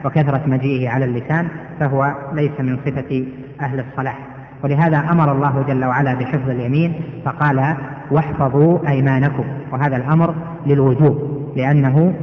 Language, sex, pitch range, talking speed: Arabic, female, 135-155 Hz, 120 wpm